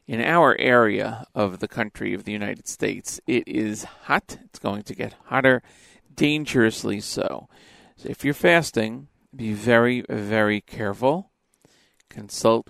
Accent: American